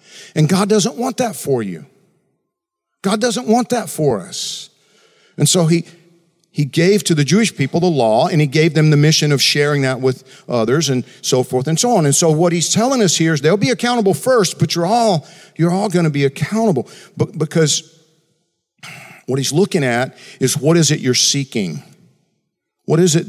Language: English